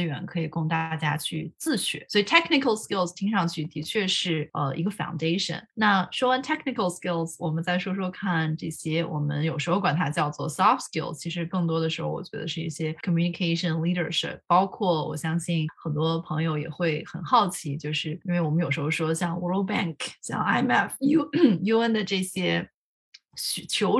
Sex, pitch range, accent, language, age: female, 160-195 Hz, native, Chinese, 20-39